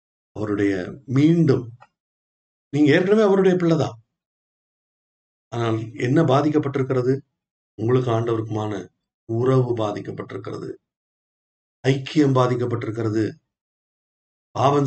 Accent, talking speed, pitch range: native, 50 wpm, 110-145 Hz